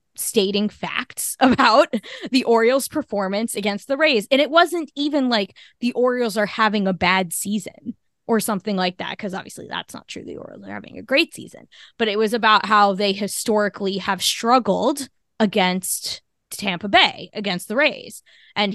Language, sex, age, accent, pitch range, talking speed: English, female, 20-39, American, 195-240 Hz, 170 wpm